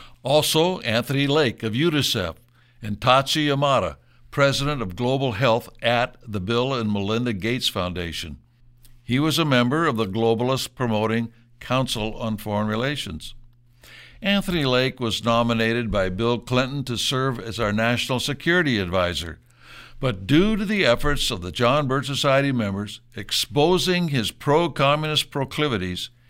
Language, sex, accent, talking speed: English, male, American, 135 wpm